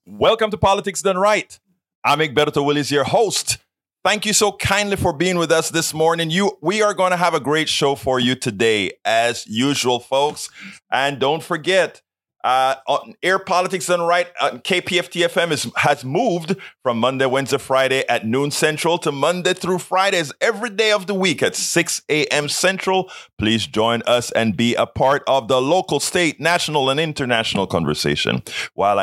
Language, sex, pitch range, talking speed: English, male, 115-180 Hz, 175 wpm